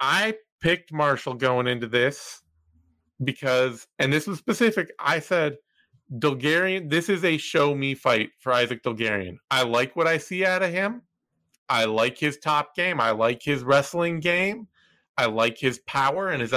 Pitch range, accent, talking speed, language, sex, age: 120-150 Hz, American, 165 wpm, English, male, 30-49